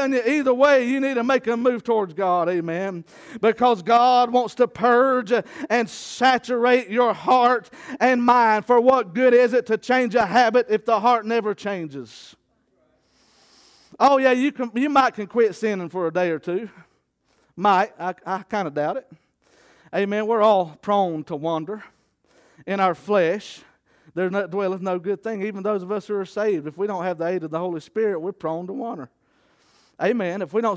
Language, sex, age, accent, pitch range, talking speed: English, male, 40-59, American, 180-230 Hz, 190 wpm